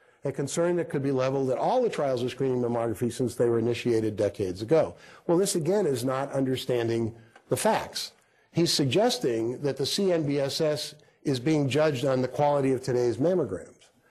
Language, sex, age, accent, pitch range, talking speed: English, male, 50-69, American, 115-145 Hz, 175 wpm